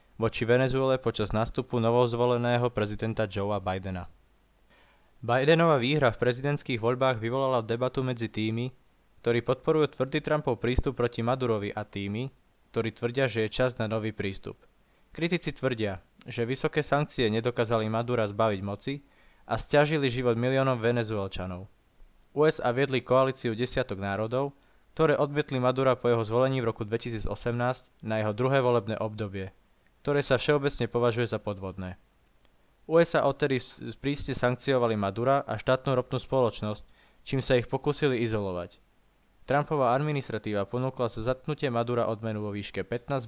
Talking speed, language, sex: 135 wpm, Slovak, male